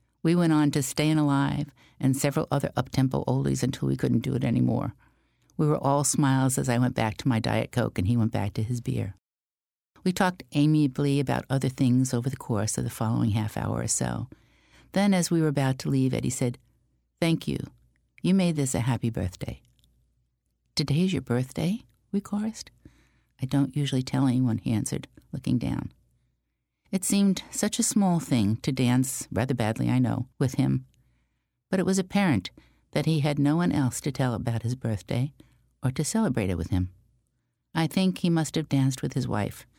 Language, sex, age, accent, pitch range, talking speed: English, female, 60-79, American, 115-155 Hz, 190 wpm